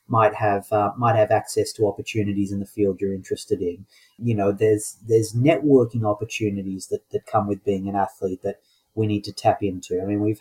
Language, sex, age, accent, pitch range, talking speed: English, male, 30-49, Australian, 105-120 Hz, 210 wpm